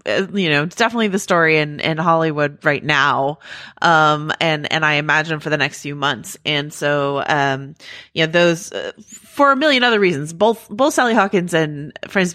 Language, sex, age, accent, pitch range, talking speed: English, female, 30-49, American, 145-180 Hz, 190 wpm